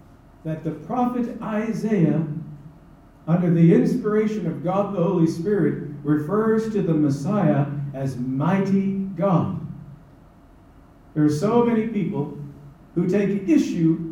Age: 50-69